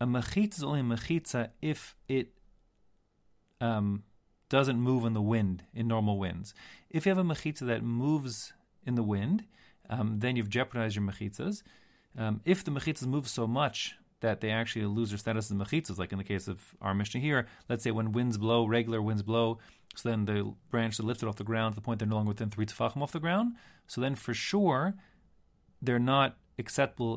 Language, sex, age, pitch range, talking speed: English, male, 30-49, 105-135 Hz, 200 wpm